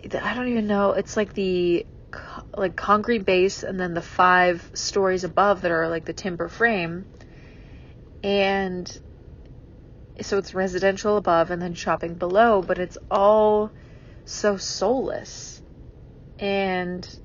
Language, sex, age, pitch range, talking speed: English, female, 30-49, 175-205 Hz, 130 wpm